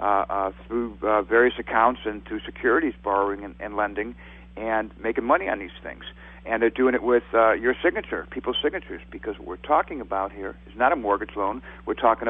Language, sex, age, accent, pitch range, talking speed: English, male, 60-79, American, 105-120 Hz, 205 wpm